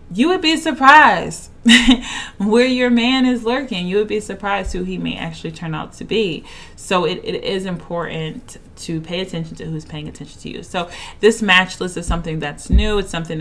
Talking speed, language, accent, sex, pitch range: 200 wpm, English, American, female, 155-205 Hz